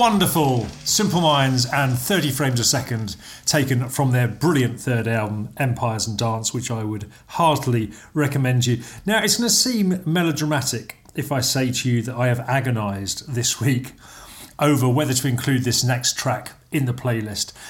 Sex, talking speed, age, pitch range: male, 170 wpm, 40-59, 120-145 Hz